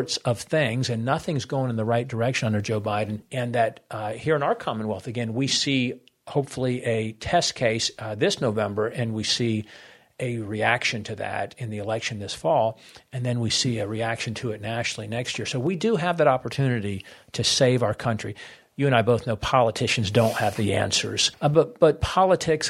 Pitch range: 110-130 Hz